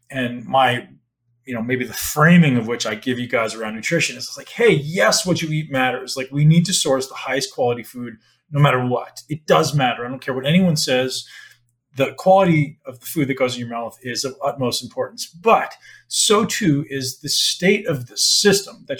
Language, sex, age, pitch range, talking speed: English, male, 30-49, 125-170 Hz, 215 wpm